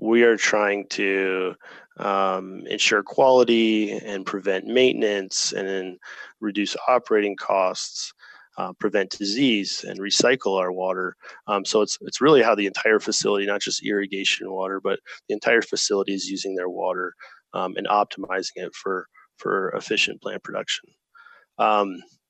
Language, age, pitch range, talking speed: English, 20-39, 100-115 Hz, 145 wpm